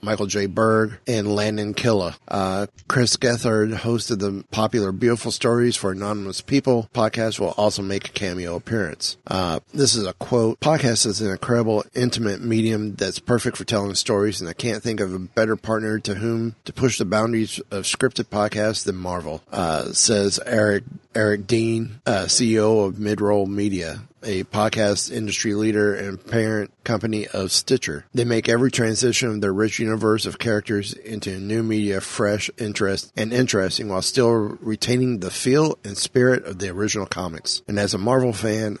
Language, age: English, 30-49